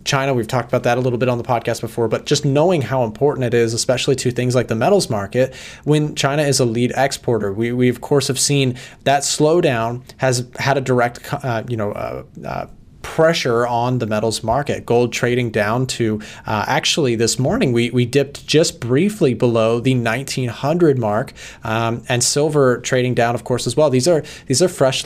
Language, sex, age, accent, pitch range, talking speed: English, male, 30-49, American, 115-135 Hz, 205 wpm